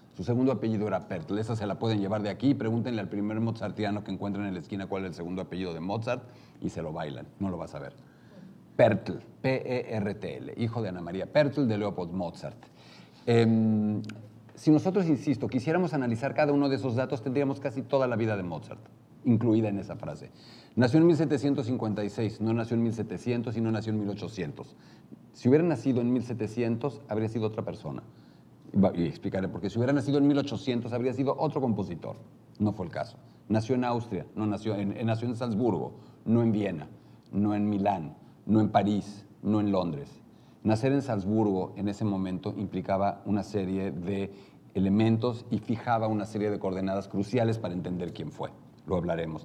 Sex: male